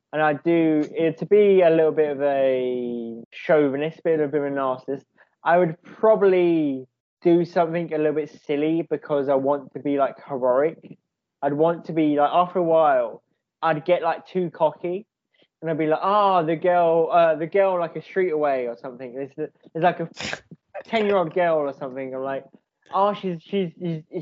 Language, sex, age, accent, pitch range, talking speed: English, male, 20-39, British, 155-210 Hz, 190 wpm